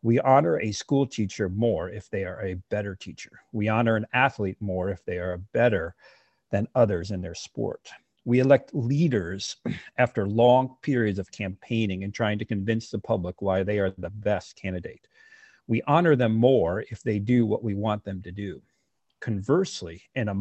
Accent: American